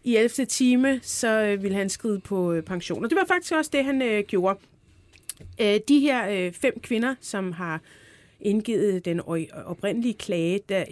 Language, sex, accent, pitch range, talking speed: Danish, female, native, 180-230 Hz, 170 wpm